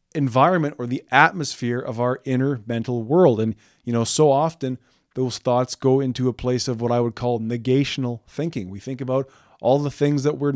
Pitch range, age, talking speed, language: 120-145 Hz, 20-39, 200 wpm, English